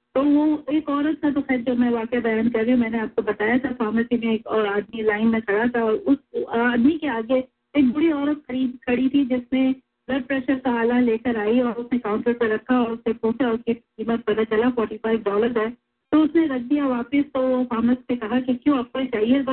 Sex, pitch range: female, 230-280 Hz